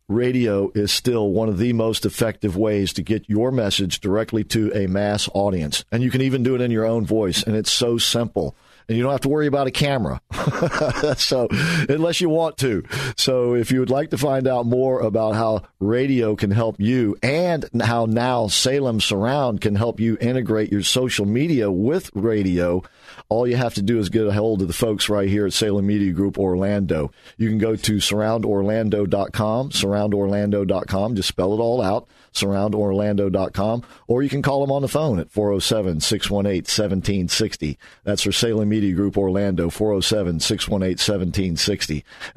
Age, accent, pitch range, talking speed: 50-69, American, 100-115 Hz, 175 wpm